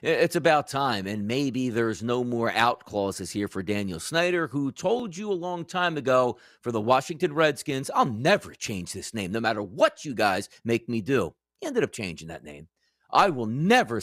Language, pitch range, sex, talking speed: English, 125-190 Hz, male, 200 wpm